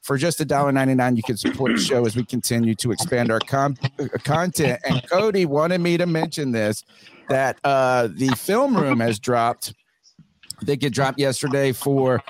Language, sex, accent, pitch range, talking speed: English, male, American, 125-160 Hz, 185 wpm